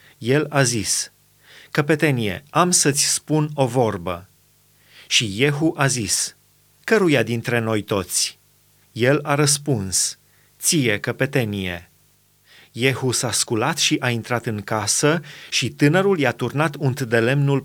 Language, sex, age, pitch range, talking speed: Romanian, male, 30-49, 125-160 Hz, 125 wpm